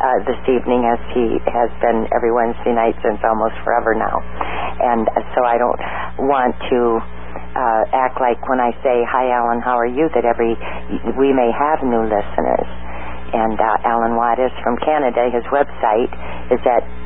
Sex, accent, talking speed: female, American, 170 wpm